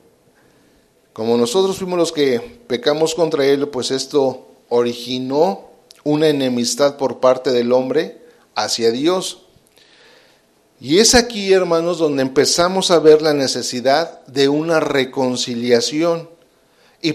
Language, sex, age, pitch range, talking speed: English, male, 50-69, 125-170 Hz, 115 wpm